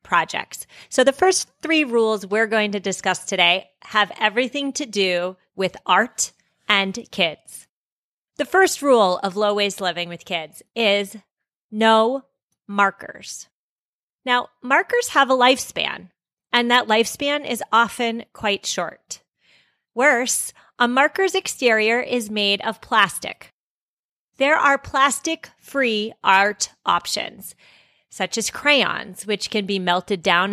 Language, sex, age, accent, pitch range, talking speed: English, female, 30-49, American, 195-255 Hz, 125 wpm